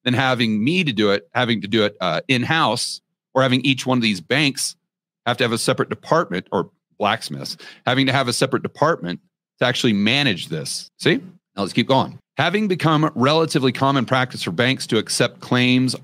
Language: English